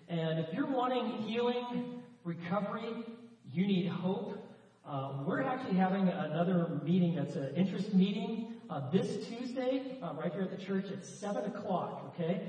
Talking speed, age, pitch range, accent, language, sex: 155 wpm, 40-59, 165-205 Hz, American, English, male